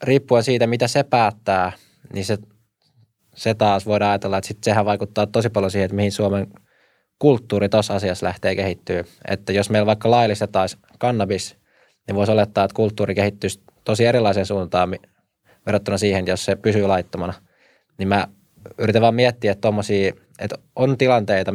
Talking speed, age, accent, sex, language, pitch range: 160 wpm, 20-39, native, male, Finnish, 95-110 Hz